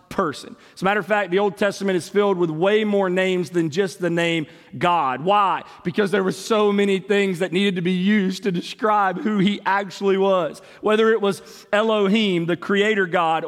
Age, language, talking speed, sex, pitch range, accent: 40-59, English, 195 wpm, male, 175-220 Hz, American